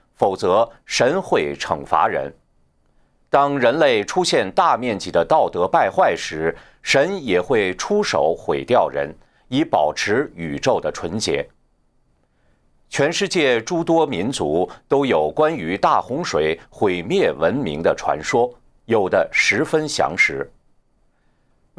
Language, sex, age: Chinese, male, 50-69